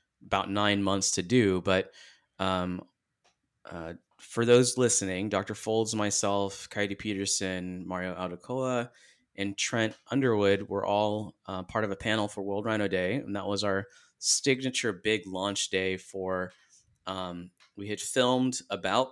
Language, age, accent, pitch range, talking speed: English, 20-39, American, 95-110 Hz, 145 wpm